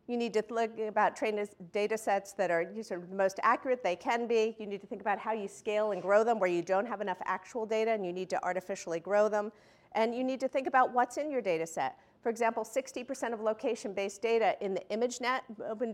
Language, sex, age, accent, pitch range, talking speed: English, female, 50-69, American, 185-235 Hz, 230 wpm